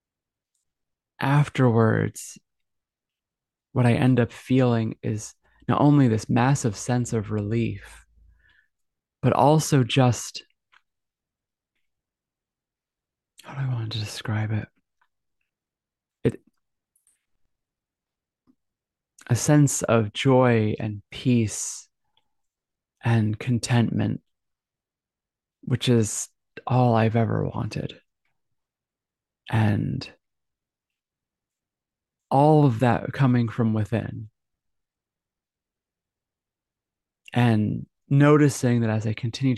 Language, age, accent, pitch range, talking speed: English, 20-39, American, 110-125 Hz, 80 wpm